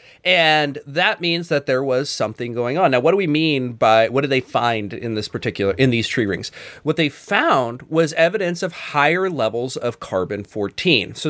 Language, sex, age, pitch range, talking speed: English, male, 30-49, 115-150 Hz, 195 wpm